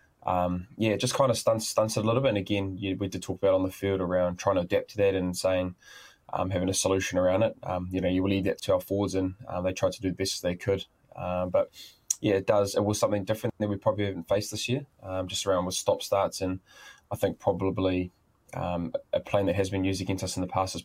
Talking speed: 280 wpm